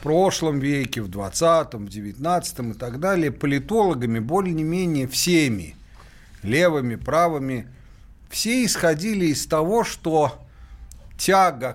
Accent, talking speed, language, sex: native, 115 wpm, Russian, male